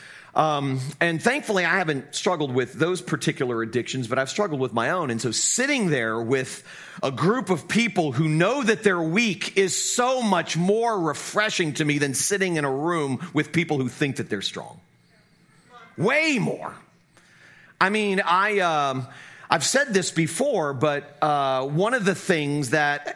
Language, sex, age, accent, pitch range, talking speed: English, male, 40-59, American, 145-200 Hz, 170 wpm